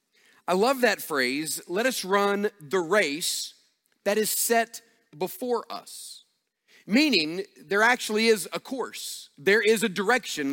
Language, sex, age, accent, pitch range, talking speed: English, male, 40-59, American, 130-205 Hz, 135 wpm